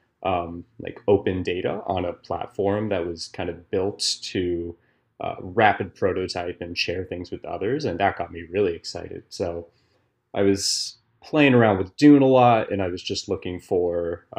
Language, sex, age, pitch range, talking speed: English, male, 30-49, 90-115 Hz, 175 wpm